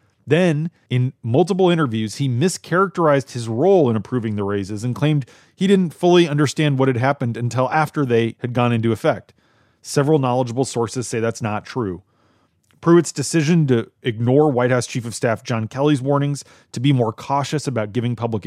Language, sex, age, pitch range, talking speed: English, male, 30-49, 115-145 Hz, 175 wpm